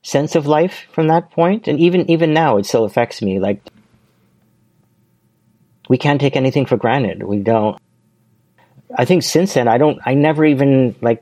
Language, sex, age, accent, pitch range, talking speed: English, male, 40-59, American, 110-140 Hz, 175 wpm